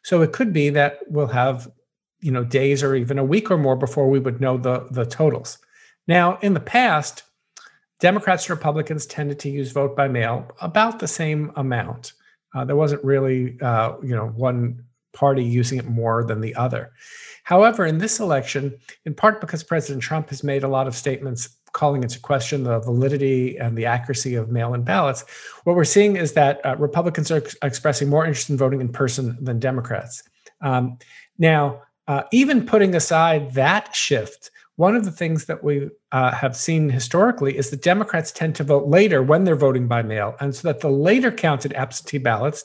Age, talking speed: 50-69, 185 wpm